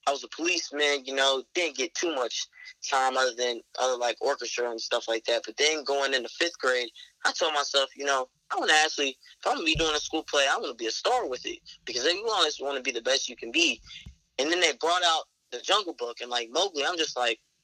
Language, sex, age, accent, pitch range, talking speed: English, male, 20-39, American, 130-170 Hz, 260 wpm